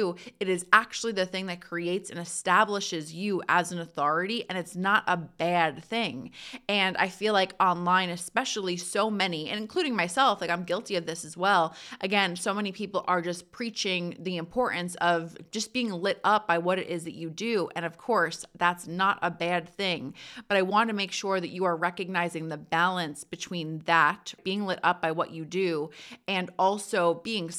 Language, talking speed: English, 195 wpm